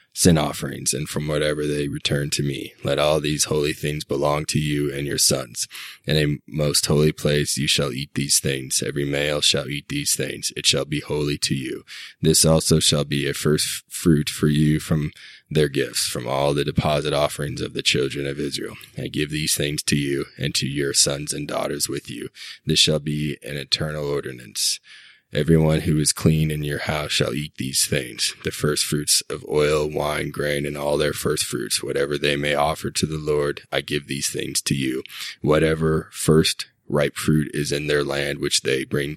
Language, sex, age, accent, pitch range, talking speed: English, male, 20-39, American, 70-75 Hz, 200 wpm